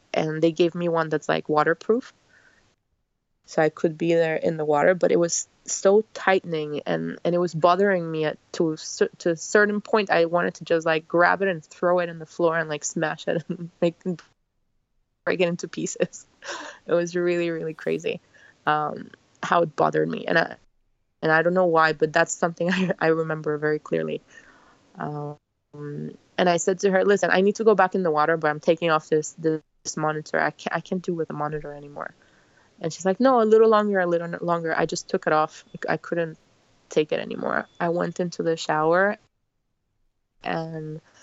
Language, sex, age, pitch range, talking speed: English, female, 20-39, 150-180 Hz, 200 wpm